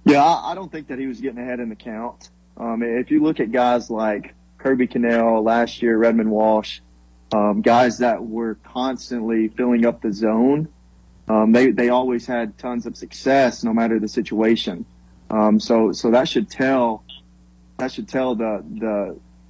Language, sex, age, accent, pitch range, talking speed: English, male, 30-49, American, 105-125 Hz, 175 wpm